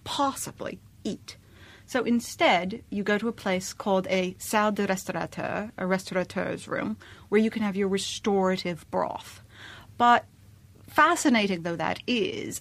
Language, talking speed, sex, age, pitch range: English, 140 wpm, female, 40-59, 185-235 Hz